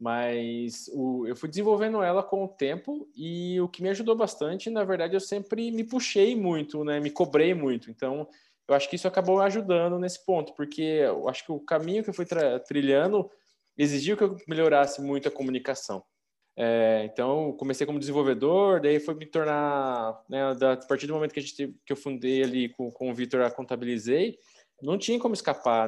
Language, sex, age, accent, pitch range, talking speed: Portuguese, male, 20-39, Brazilian, 140-195 Hz, 200 wpm